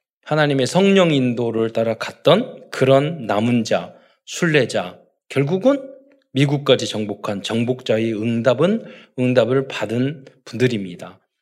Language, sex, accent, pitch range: Korean, male, native, 115-185 Hz